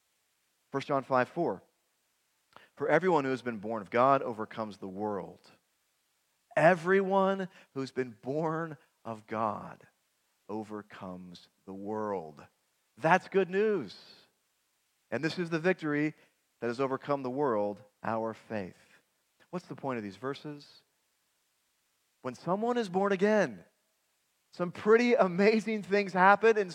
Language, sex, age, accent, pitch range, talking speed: English, male, 40-59, American, 115-180 Hz, 125 wpm